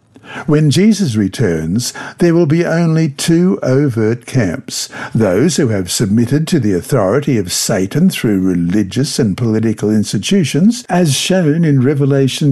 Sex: male